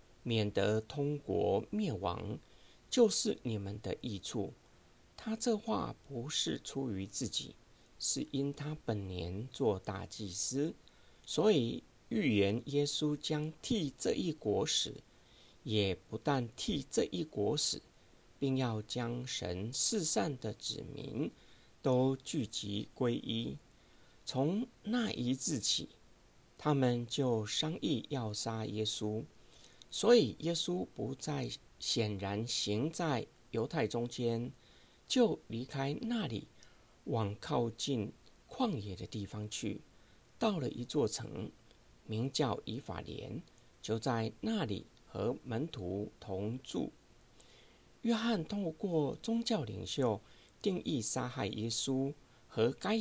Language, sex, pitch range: Chinese, male, 110-155 Hz